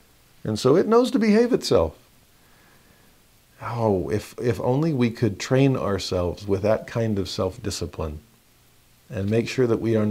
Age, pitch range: 50-69, 100-130 Hz